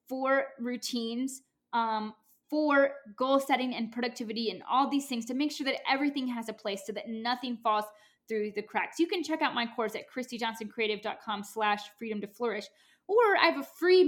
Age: 20-39